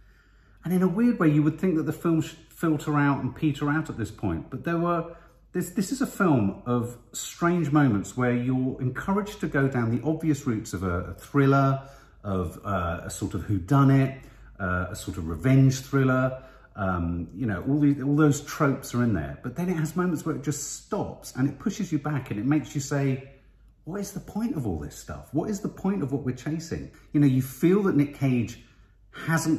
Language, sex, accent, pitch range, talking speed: English, male, British, 100-150 Hz, 225 wpm